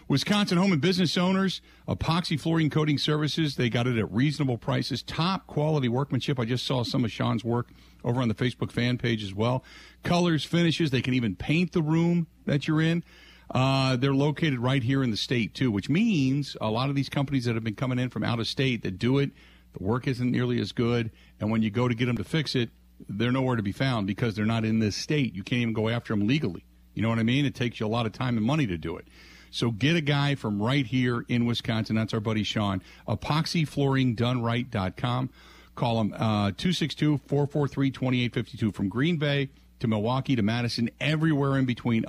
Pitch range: 110-145 Hz